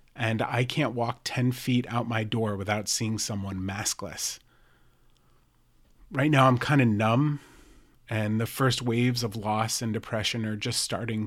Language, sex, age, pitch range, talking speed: English, male, 30-49, 110-140 Hz, 160 wpm